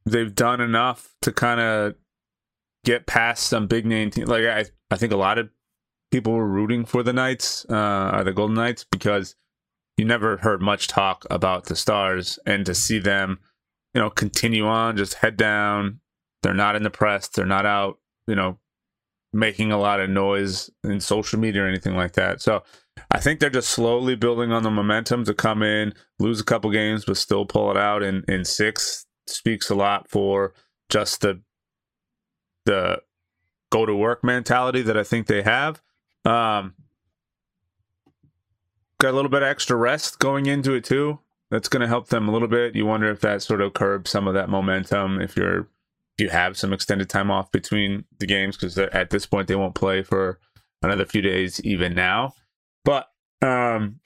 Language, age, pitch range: English, 20-39, 100-115 Hz